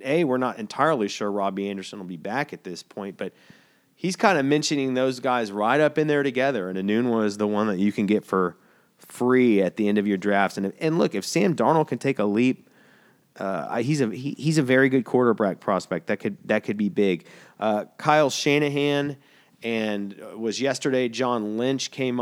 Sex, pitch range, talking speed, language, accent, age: male, 105-125 Hz, 210 wpm, English, American, 30-49